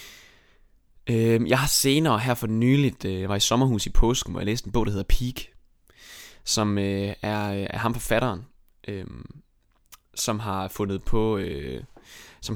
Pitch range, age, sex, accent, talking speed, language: 100-130 Hz, 20-39, male, native, 145 wpm, Danish